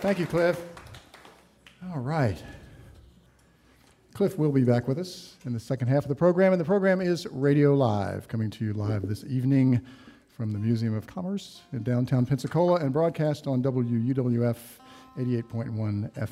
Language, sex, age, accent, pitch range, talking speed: English, male, 50-69, American, 115-150 Hz, 160 wpm